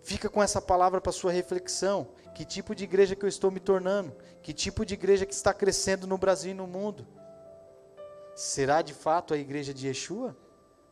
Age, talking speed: 30-49, 190 wpm